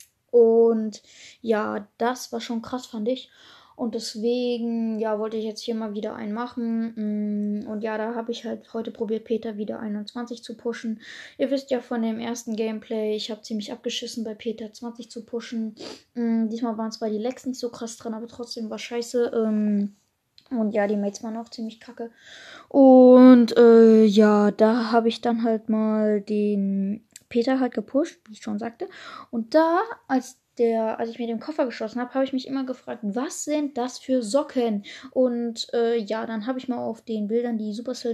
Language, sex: German, female